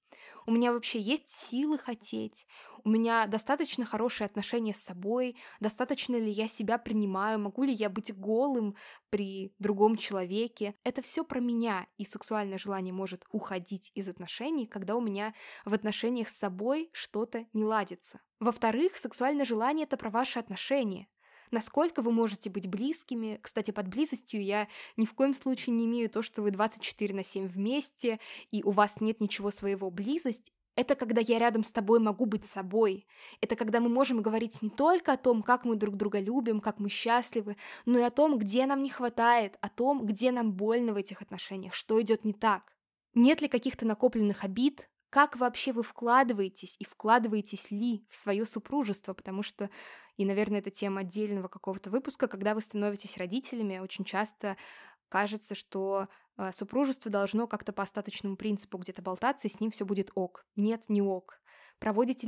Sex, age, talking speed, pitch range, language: female, 20-39, 170 wpm, 205-240 Hz, Russian